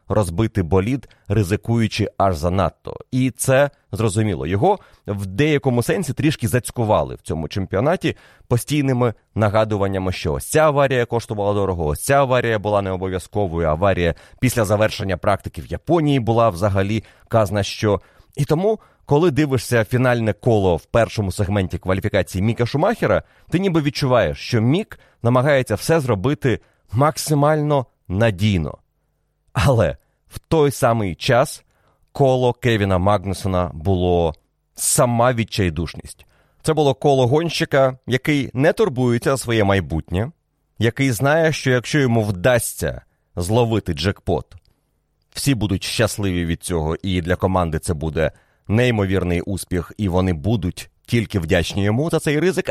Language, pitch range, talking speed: Ukrainian, 95-130 Hz, 125 wpm